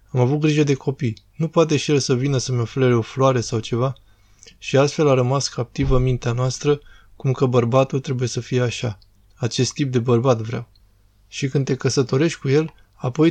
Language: Romanian